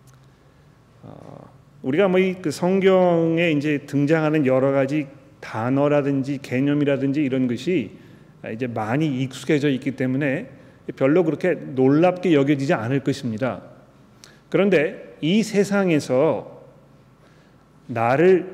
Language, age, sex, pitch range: Korean, 40-59, male, 135-160 Hz